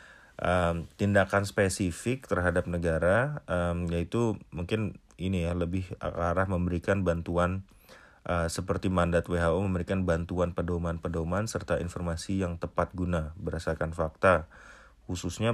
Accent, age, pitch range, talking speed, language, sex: native, 30-49, 85-95 Hz, 110 wpm, Indonesian, male